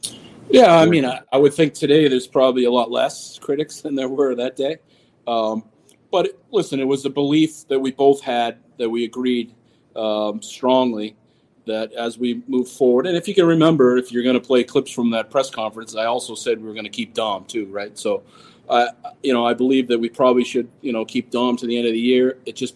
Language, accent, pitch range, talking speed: English, American, 115-135 Hz, 230 wpm